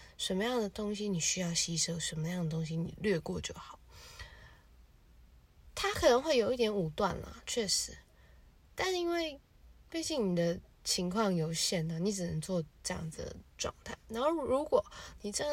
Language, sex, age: Chinese, female, 20-39